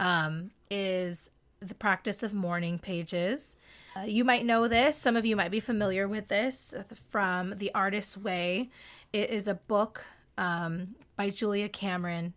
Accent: American